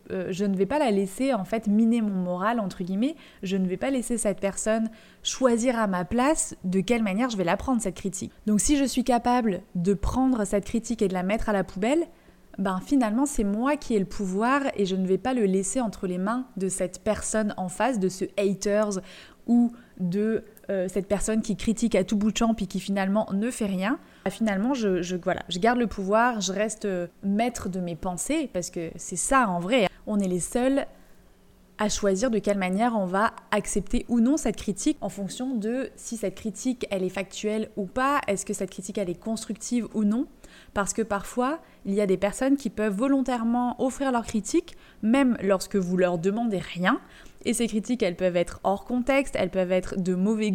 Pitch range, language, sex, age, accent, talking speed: 190-240 Hz, French, female, 20-39, French, 220 wpm